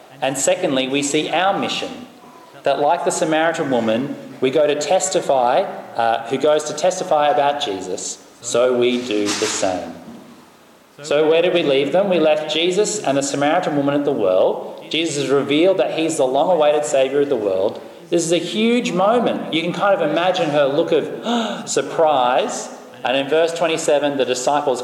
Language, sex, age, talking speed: English, male, 30-49, 180 wpm